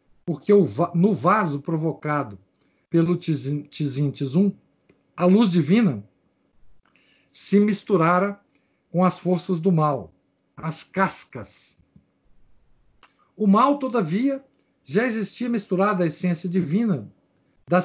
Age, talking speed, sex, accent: 60-79, 100 wpm, male, Brazilian